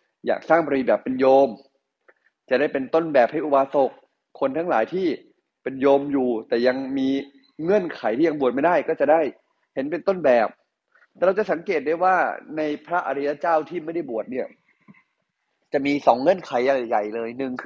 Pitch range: 125-160 Hz